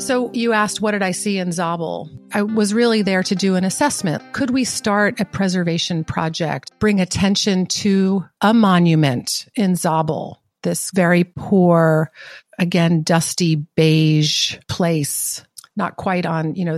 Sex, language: female, English